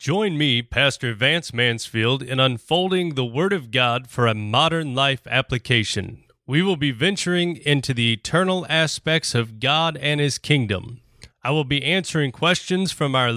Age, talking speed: 30-49, 160 wpm